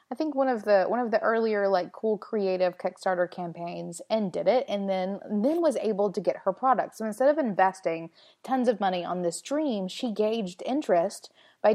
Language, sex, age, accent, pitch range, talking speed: English, female, 20-39, American, 190-240 Hz, 210 wpm